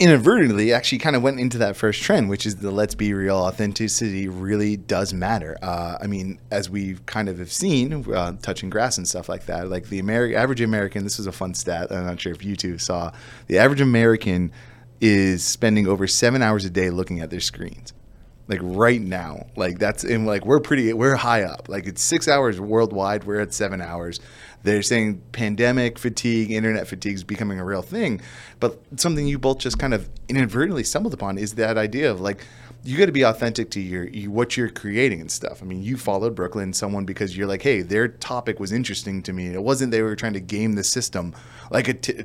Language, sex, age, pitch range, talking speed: English, male, 20-39, 95-120 Hz, 215 wpm